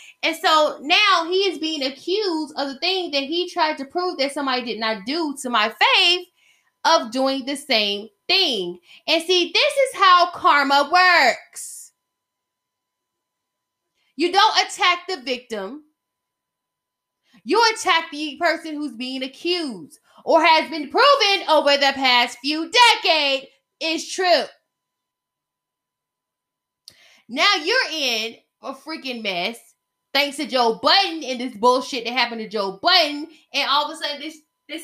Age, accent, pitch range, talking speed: 20-39, American, 250-340 Hz, 145 wpm